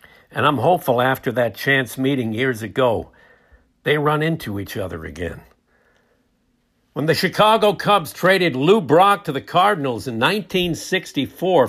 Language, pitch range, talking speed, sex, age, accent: English, 135-175 Hz, 140 wpm, male, 60-79, American